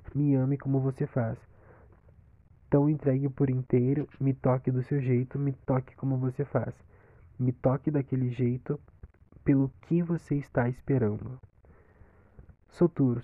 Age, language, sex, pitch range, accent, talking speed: 20-39, Portuguese, male, 110-145 Hz, Brazilian, 130 wpm